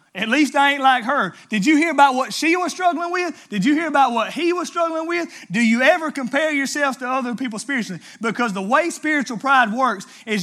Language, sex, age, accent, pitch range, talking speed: English, male, 30-49, American, 205-295 Hz, 230 wpm